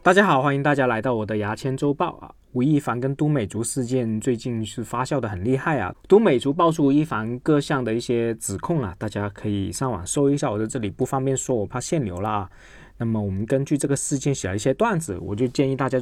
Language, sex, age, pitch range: Chinese, male, 20-39, 110-150 Hz